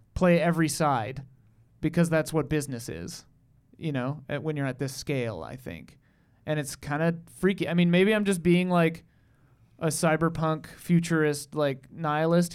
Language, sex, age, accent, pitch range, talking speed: English, male, 30-49, American, 140-175 Hz, 165 wpm